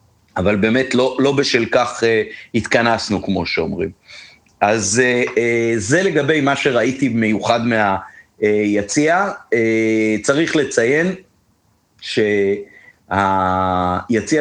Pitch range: 100-140 Hz